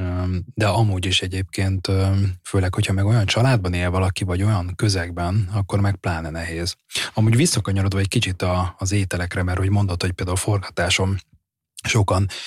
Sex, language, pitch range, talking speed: male, Hungarian, 95-115 Hz, 150 wpm